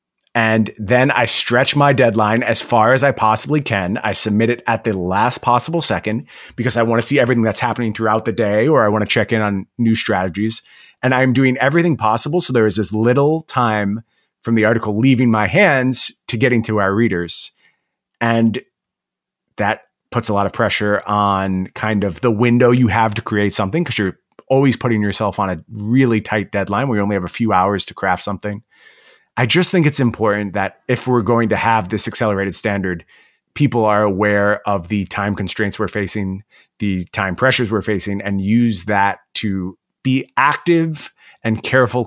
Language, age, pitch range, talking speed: English, 30-49, 100-125 Hz, 190 wpm